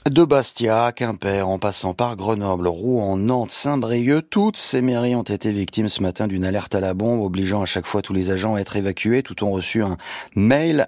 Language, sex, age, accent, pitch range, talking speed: French, male, 30-49, French, 95-125 Hz, 210 wpm